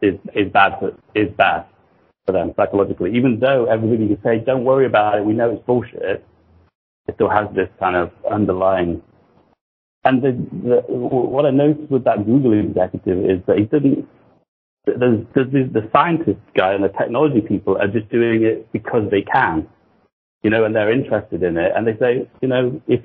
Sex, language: male, English